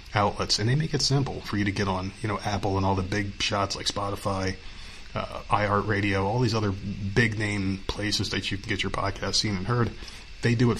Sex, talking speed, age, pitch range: male, 230 wpm, 30-49, 100-115 Hz